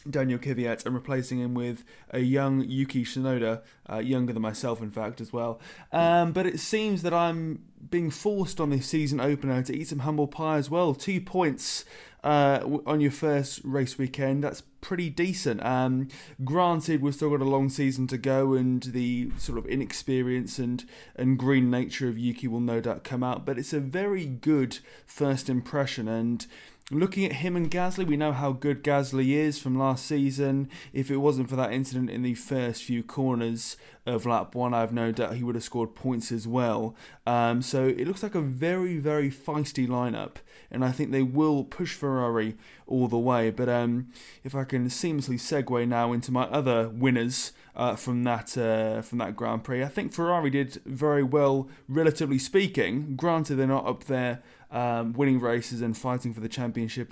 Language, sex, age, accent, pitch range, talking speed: English, male, 20-39, British, 120-150 Hz, 190 wpm